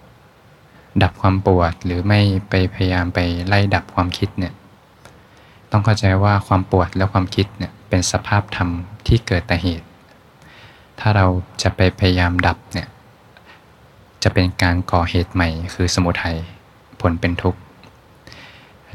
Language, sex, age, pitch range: Thai, male, 20-39, 90-105 Hz